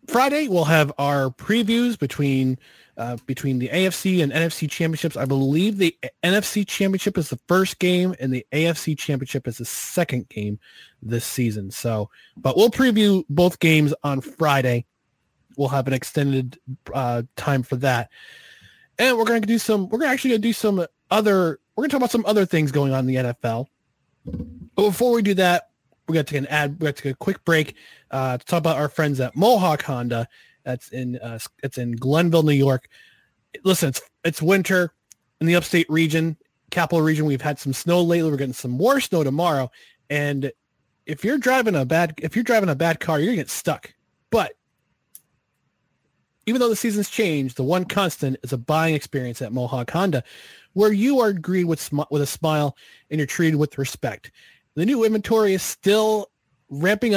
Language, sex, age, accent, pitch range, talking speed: English, male, 20-39, American, 135-190 Hz, 190 wpm